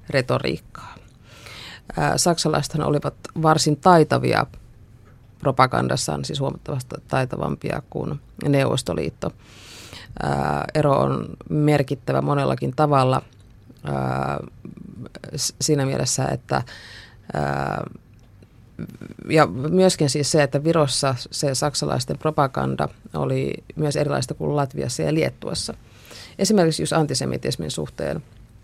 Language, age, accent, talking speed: Finnish, 30-49, native, 80 wpm